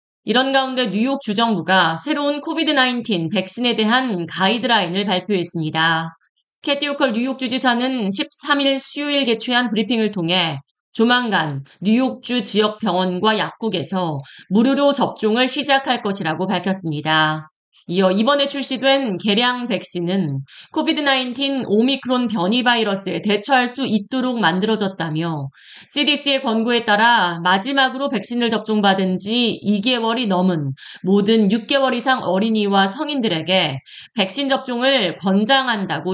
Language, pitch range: Korean, 185-260 Hz